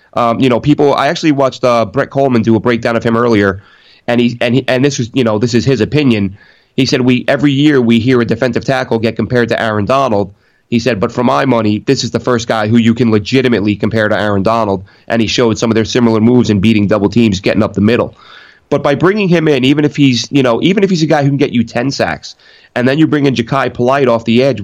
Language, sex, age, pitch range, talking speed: English, male, 30-49, 115-140 Hz, 270 wpm